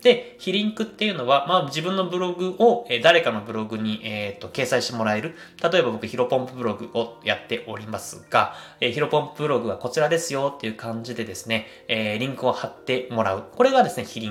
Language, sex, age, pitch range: Japanese, male, 20-39, 115-185 Hz